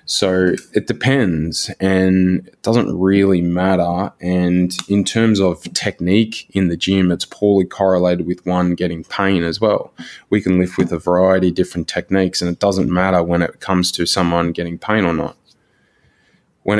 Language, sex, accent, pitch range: English, male, Australian, 85-95 Hz